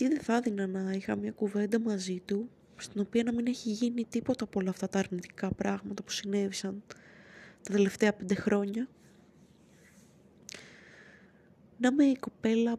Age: 20-39